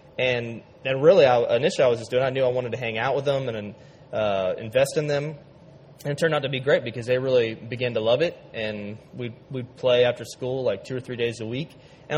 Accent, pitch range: American, 125-150 Hz